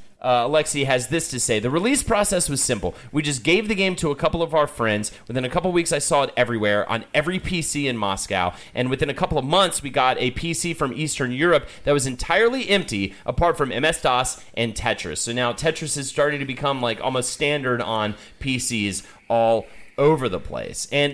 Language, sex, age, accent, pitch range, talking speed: English, male, 30-49, American, 120-165 Hz, 215 wpm